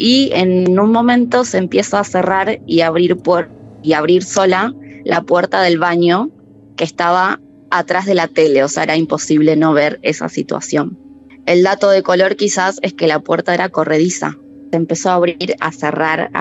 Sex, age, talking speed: female, 20-39, 175 wpm